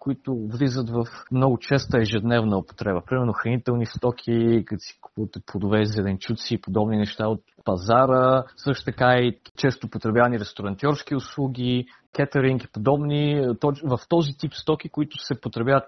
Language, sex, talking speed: Bulgarian, male, 140 wpm